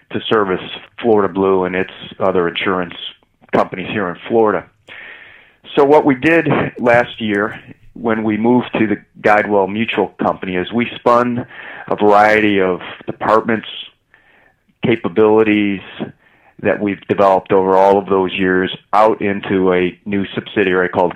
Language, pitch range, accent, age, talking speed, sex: English, 95-110 Hz, American, 40-59, 135 wpm, male